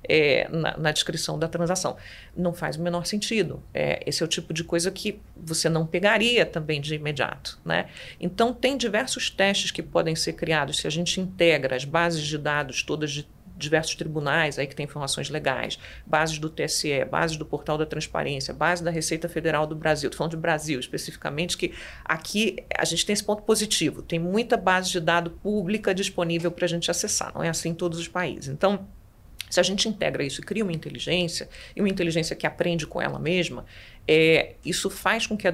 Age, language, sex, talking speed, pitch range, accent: 40-59, Portuguese, female, 205 wpm, 155-200 Hz, Brazilian